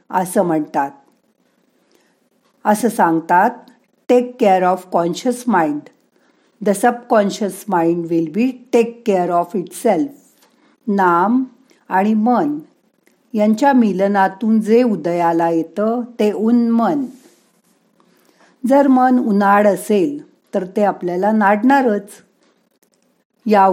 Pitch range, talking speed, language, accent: 190-255 Hz, 95 wpm, Marathi, native